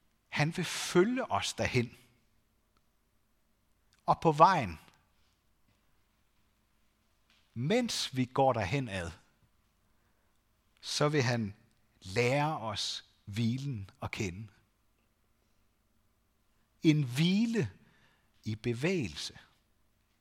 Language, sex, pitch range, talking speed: Danish, male, 105-170 Hz, 70 wpm